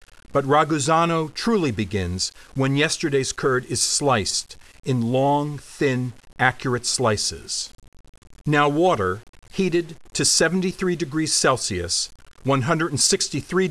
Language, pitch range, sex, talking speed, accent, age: English, 120-155 Hz, male, 95 wpm, American, 50-69